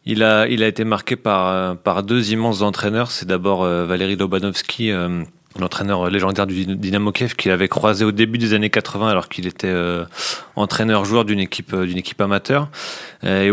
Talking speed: 180 wpm